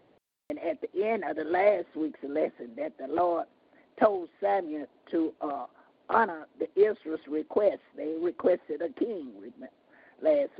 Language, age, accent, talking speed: English, 50-69, American, 140 wpm